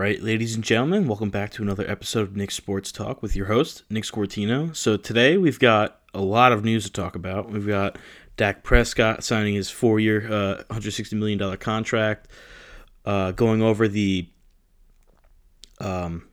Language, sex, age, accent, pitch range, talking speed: English, male, 20-39, American, 100-115 Hz, 175 wpm